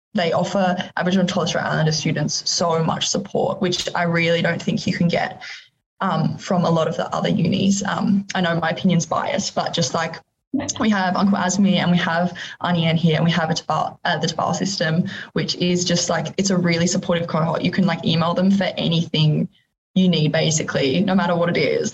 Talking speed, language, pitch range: 210 wpm, English, 170-190 Hz